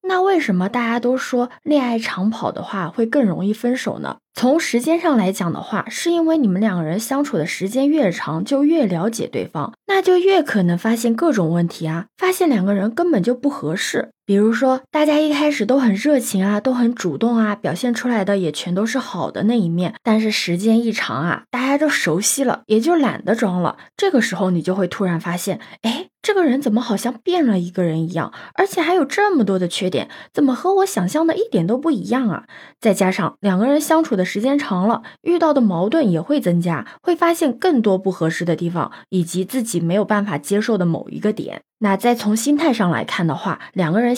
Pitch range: 185-270 Hz